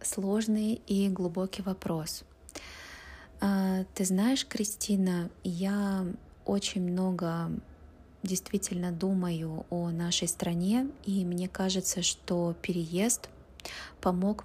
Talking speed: 85 wpm